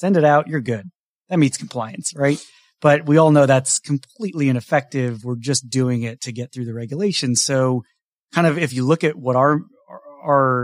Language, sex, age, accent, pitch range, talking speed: English, male, 30-49, American, 125-150 Hz, 195 wpm